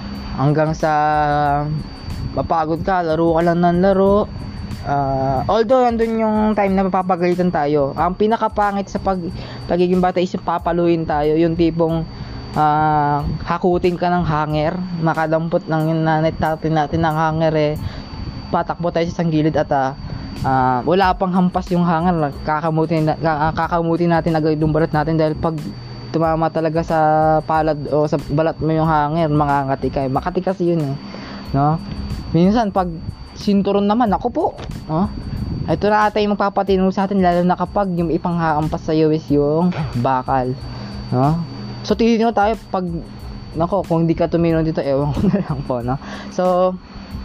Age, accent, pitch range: 20-39, native, 150-185 Hz